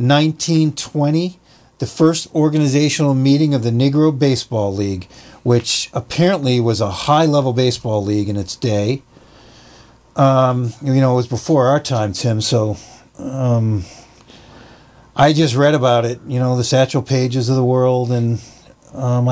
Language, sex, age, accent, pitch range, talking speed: English, male, 40-59, American, 120-140 Hz, 145 wpm